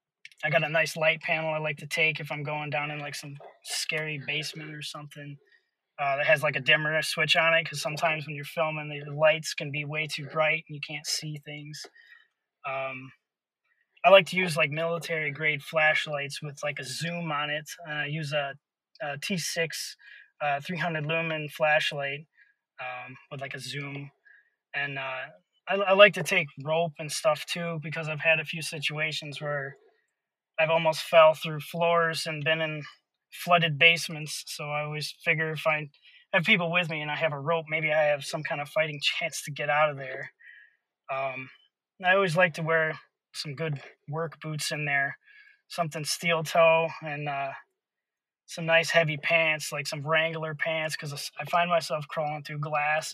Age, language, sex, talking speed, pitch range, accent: 20-39, English, male, 185 wpm, 150-165 Hz, American